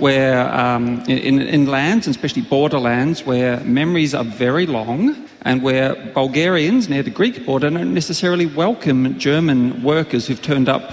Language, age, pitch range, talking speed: English, 40-59, 125-150 Hz, 150 wpm